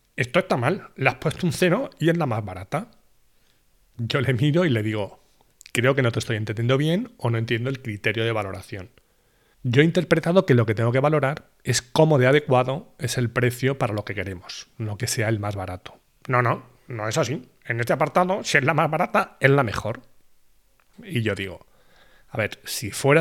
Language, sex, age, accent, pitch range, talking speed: Spanish, male, 30-49, Spanish, 110-145 Hz, 210 wpm